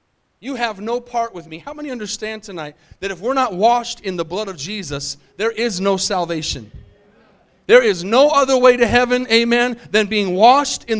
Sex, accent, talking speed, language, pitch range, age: male, American, 195 wpm, English, 205-270 Hz, 30-49